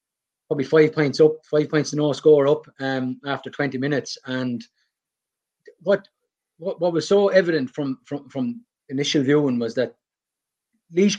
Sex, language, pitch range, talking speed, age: male, English, 135-165 Hz, 155 wpm, 30-49